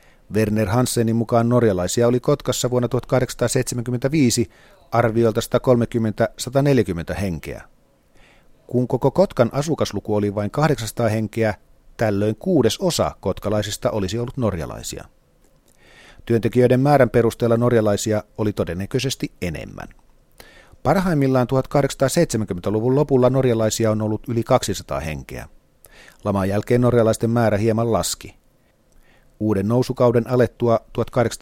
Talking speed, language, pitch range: 95 wpm, Finnish, 105-130 Hz